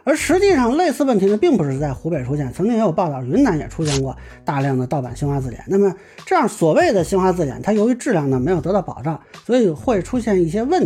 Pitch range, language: 145-215 Hz, Chinese